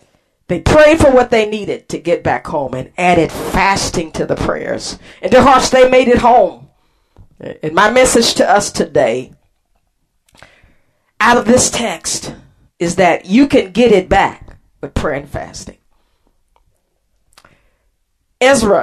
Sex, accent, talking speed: female, American, 145 wpm